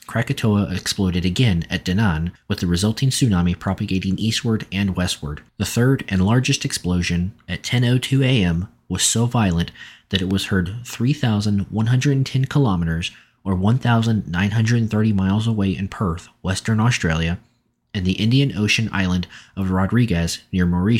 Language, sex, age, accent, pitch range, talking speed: English, male, 30-49, American, 90-115 Hz, 135 wpm